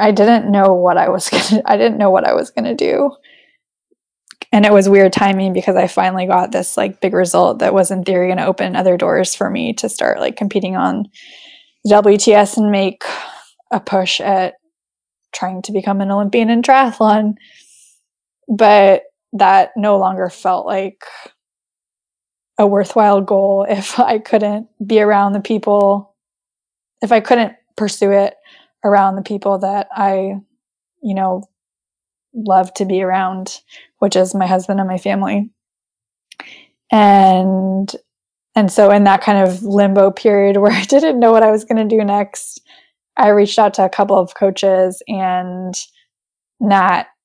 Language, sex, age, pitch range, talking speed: English, female, 10-29, 190-215 Hz, 160 wpm